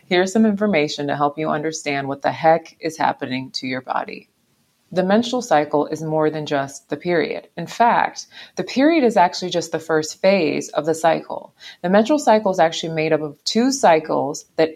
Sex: female